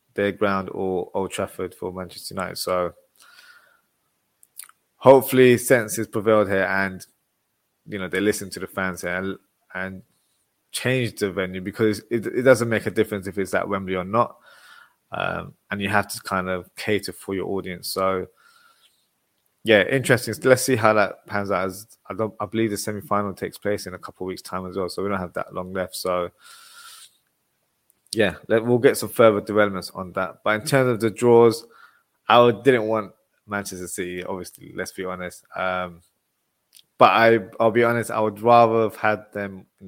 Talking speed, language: 185 wpm, English